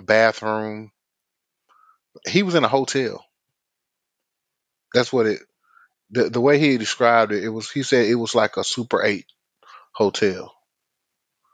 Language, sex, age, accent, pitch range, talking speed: English, male, 20-39, American, 95-120 Hz, 135 wpm